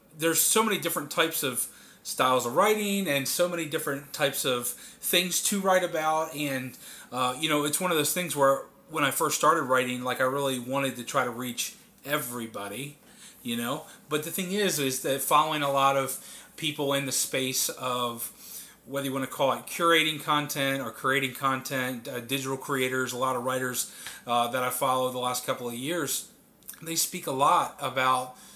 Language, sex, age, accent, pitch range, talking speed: English, male, 30-49, American, 130-155 Hz, 195 wpm